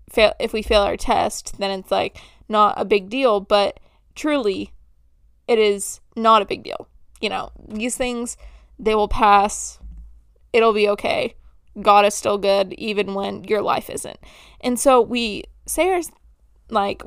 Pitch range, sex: 205-250 Hz, female